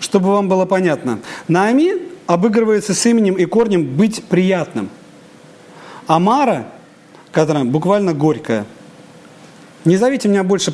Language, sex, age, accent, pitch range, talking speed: Russian, male, 40-59, native, 175-230 Hz, 110 wpm